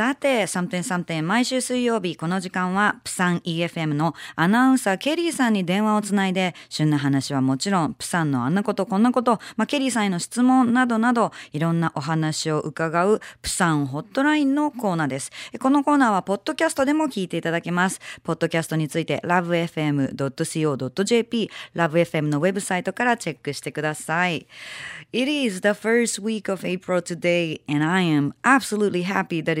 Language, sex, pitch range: Japanese, female, 170-245 Hz